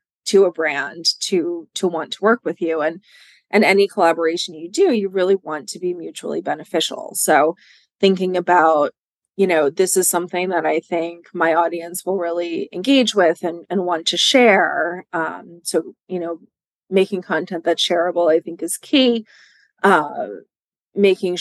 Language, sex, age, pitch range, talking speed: English, female, 20-39, 170-195 Hz, 165 wpm